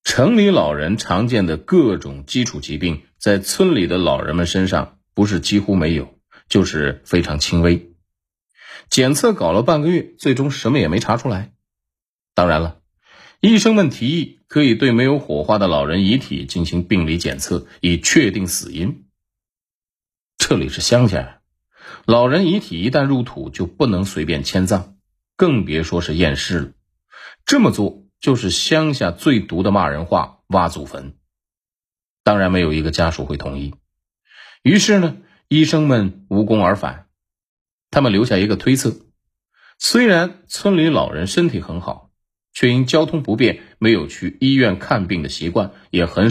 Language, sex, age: Chinese, male, 30-49